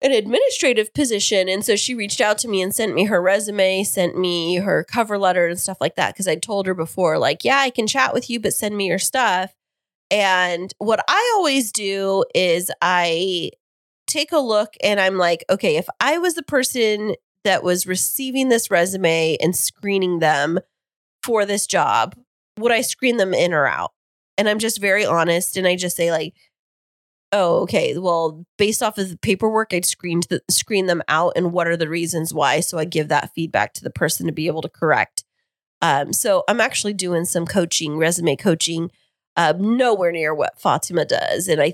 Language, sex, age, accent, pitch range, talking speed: English, female, 20-39, American, 170-210 Hz, 195 wpm